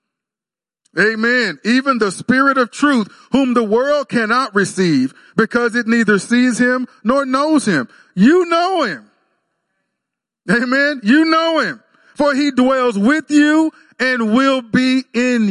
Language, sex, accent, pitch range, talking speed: English, male, American, 190-255 Hz, 135 wpm